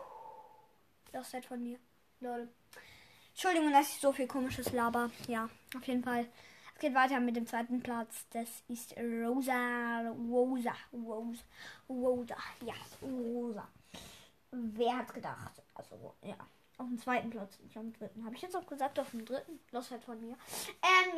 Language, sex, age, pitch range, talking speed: German, female, 20-39, 235-315 Hz, 155 wpm